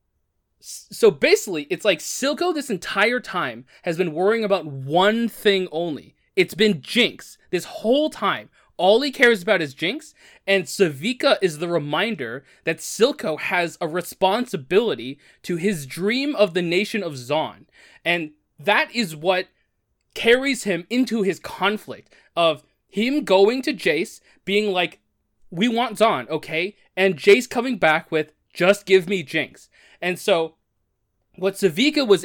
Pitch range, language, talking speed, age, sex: 155-215 Hz, English, 145 wpm, 20-39, male